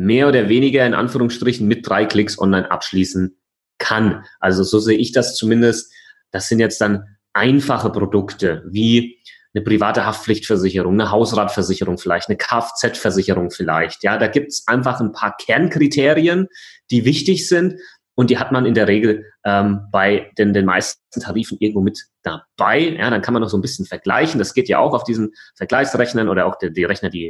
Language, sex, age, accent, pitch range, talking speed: German, male, 30-49, German, 100-125 Hz, 180 wpm